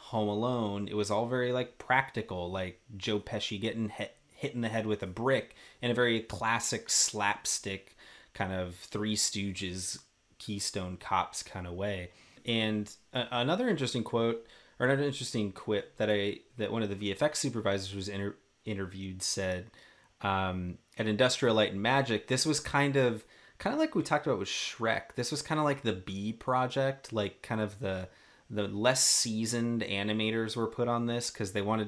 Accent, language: American, English